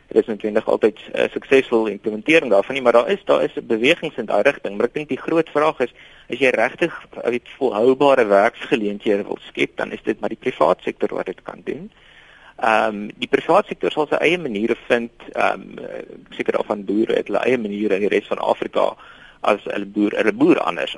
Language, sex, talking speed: Dutch, male, 190 wpm